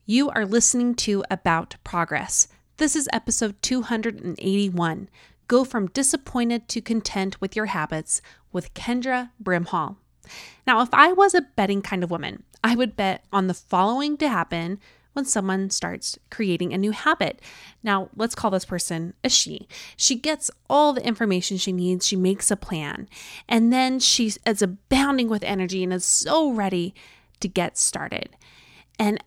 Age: 30-49